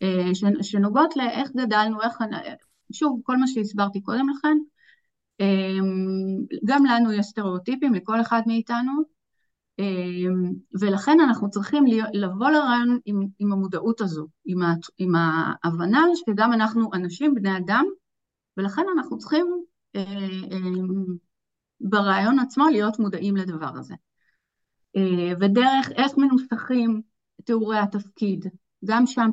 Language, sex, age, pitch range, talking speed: Hebrew, female, 30-49, 190-245 Hz, 100 wpm